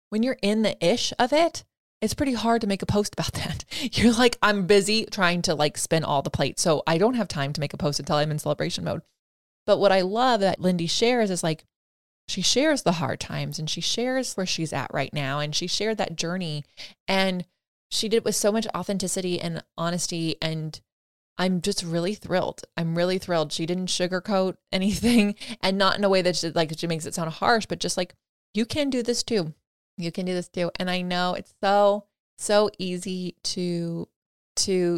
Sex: female